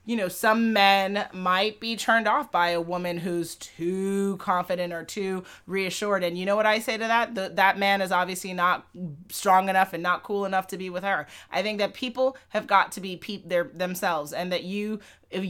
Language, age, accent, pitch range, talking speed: English, 30-49, American, 175-205 Hz, 215 wpm